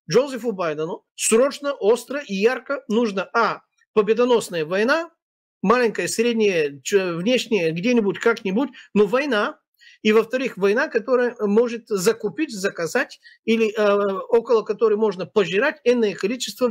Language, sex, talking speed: Russian, male, 115 wpm